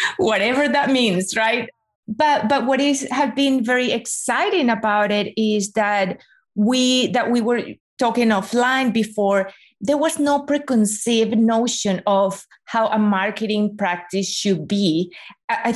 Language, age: English, 30-49